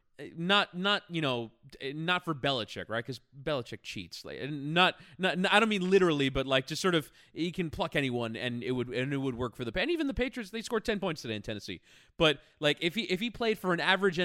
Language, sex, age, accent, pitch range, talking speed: English, male, 20-39, American, 120-175 Hz, 245 wpm